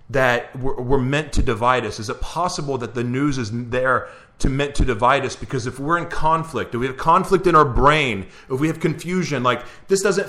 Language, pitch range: English, 150-195 Hz